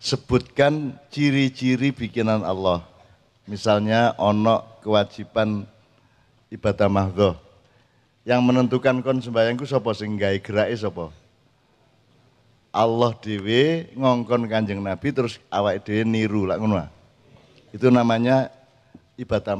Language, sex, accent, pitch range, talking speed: Indonesian, male, native, 110-135 Hz, 90 wpm